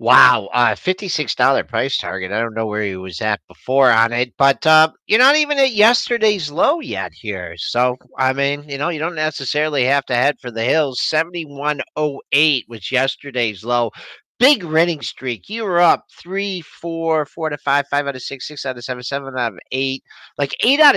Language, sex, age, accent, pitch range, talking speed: English, male, 50-69, American, 120-155 Hz, 195 wpm